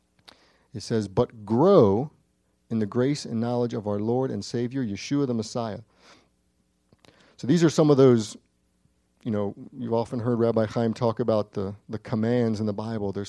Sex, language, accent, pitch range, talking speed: male, English, American, 105-125 Hz, 175 wpm